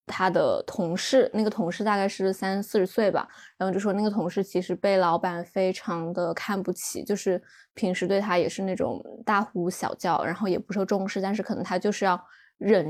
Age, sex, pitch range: 20-39, female, 185-230 Hz